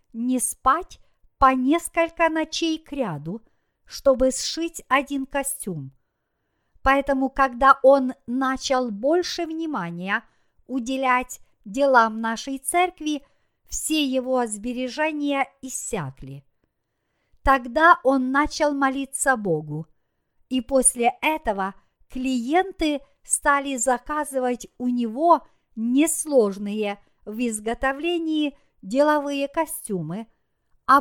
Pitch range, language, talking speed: 225-295 Hz, Russian, 85 wpm